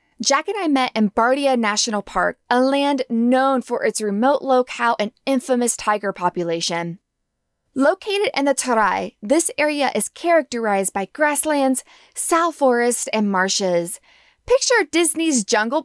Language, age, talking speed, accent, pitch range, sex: English, 20-39, 135 wpm, American, 210-290 Hz, female